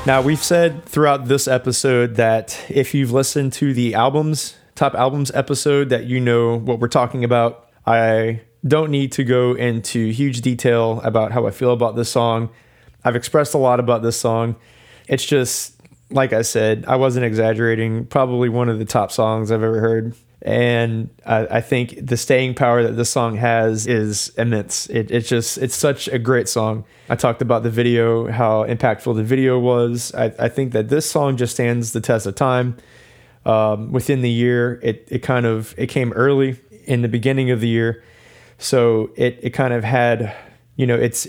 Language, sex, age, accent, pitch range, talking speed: English, male, 20-39, American, 115-130 Hz, 190 wpm